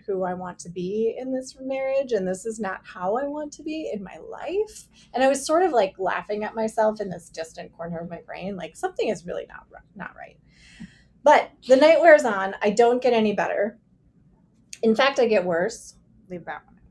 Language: English